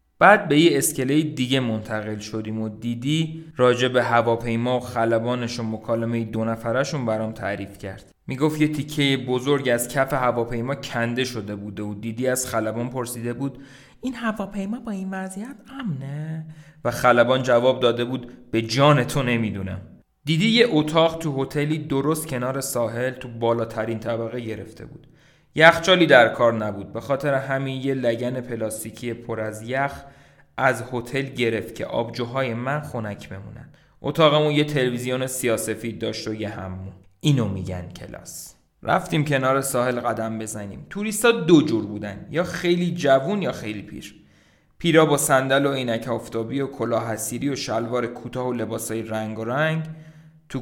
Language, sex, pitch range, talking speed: Persian, male, 115-145 Hz, 155 wpm